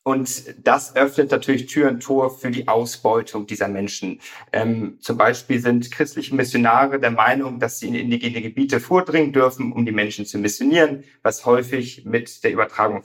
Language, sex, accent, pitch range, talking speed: German, male, German, 115-145 Hz, 170 wpm